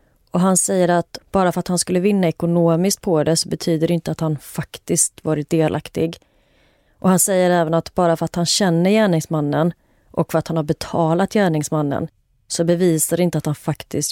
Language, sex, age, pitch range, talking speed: Swedish, female, 30-49, 155-180 Hz, 200 wpm